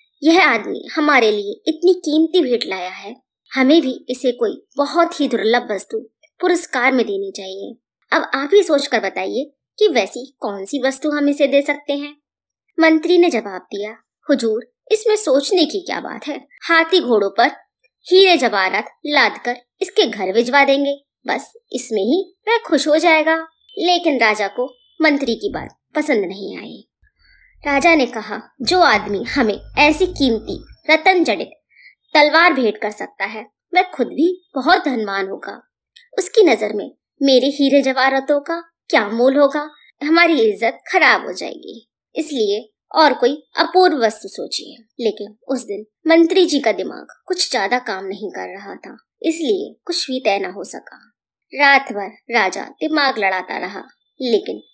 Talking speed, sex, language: 155 wpm, male, Hindi